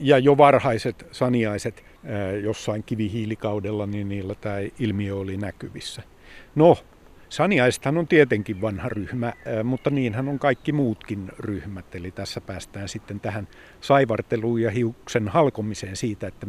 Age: 50-69